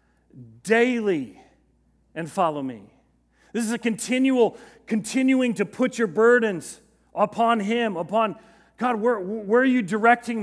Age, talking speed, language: 40-59, 125 wpm, English